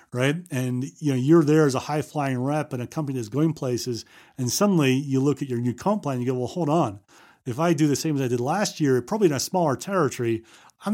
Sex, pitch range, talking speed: male, 120-155 Hz, 260 wpm